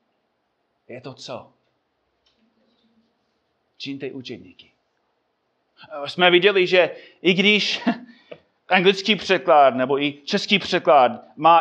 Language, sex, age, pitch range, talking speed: Czech, male, 30-49, 135-190 Hz, 90 wpm